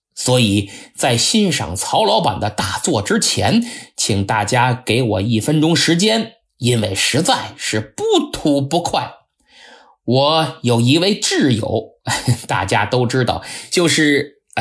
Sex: male